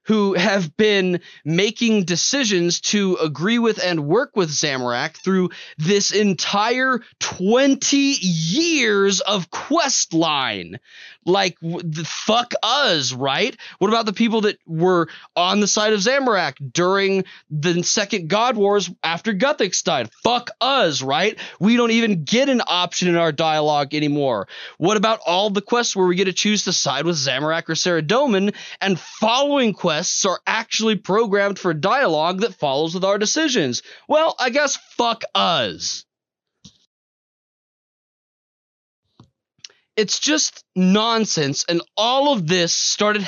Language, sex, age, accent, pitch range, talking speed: English, male, 20-39, American, 175-220 Hz, 135 wpm